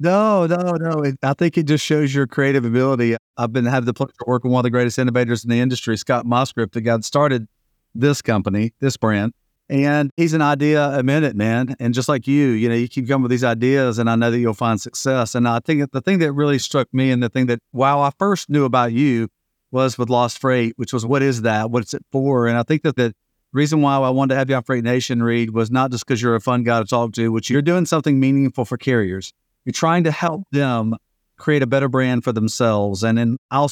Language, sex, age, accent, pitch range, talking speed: English, male, 50-69, American, 120-140 Hz, 255 wpm